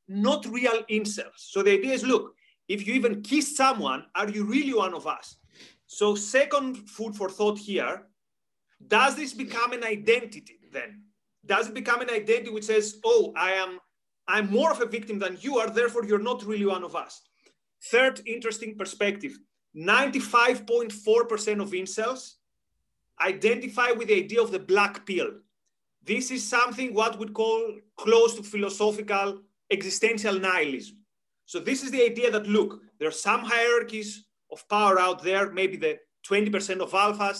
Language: English